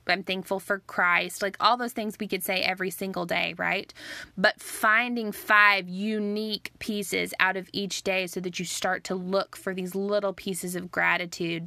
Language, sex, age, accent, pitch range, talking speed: English, female, 20-39, American, 180-210 Hz, 185 wpm